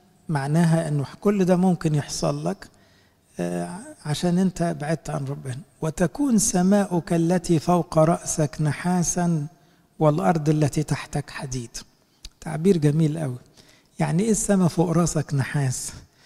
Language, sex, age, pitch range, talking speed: English, male, 60-79, 145-175 Hz, 115 wpm